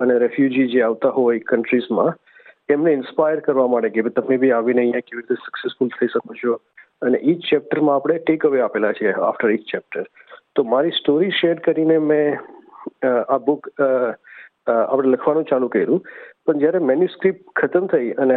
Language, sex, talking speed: Gujarati, male, 170 wpm